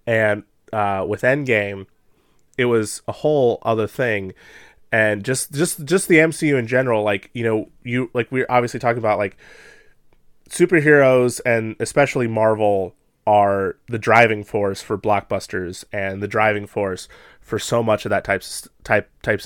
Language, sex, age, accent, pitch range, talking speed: English, male, 30-49, American, 100-125 Hz, 155 wpm